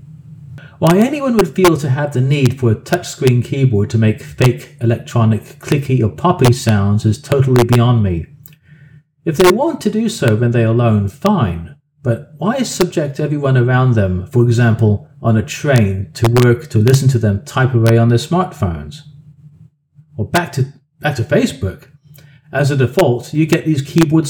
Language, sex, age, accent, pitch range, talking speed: English, male, 40-59, British, 115-150 Hz, 175 wpm